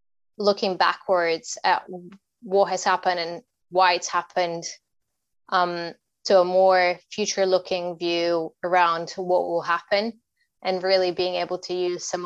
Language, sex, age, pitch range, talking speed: English, female, 20-39, 170-185 Hz, 135 wpm